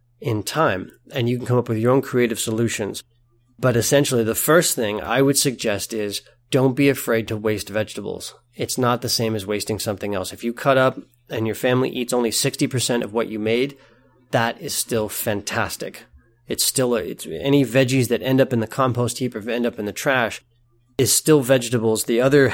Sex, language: male, English